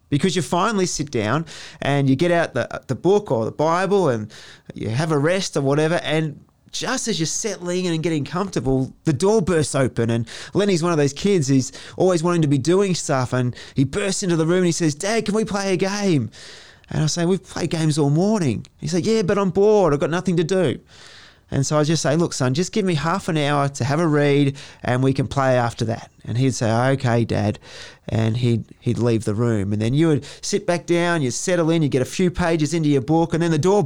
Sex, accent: male, Australian